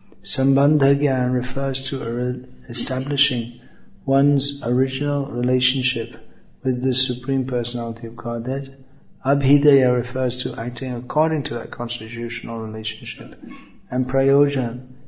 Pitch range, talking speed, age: 120-135 Hz, 95 wpm, 50-69